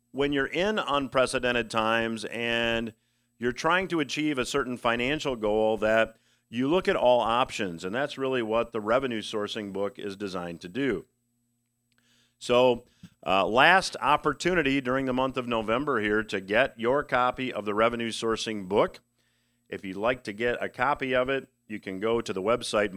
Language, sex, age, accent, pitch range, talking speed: English, male, 50-69, American, 110-130 Hz, 170 wpm